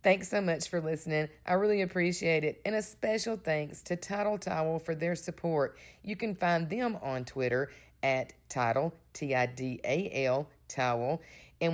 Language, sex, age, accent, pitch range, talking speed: English, female, 50-69, American, 145-180 Hz, 155 wpm